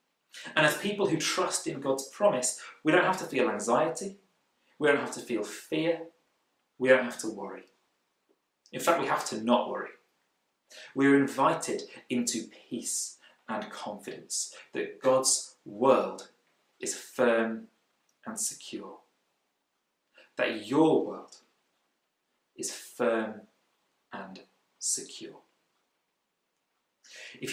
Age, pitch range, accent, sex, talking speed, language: 30-49, 120-160 Hz, British, male, 120 wpm, English